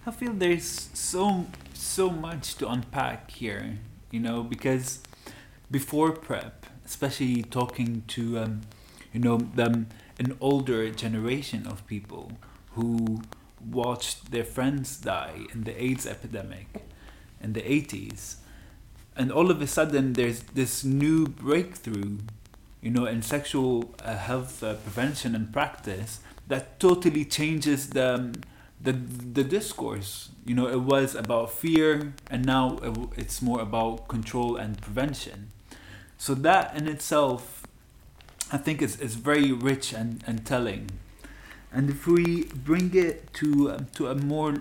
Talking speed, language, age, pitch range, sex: 135 wpm, Arabic, 30-49, 110-140 Hz, male